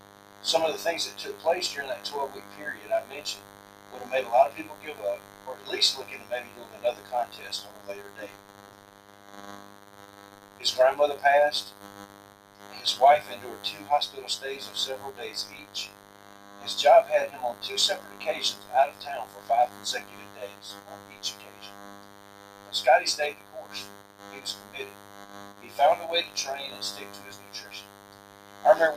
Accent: American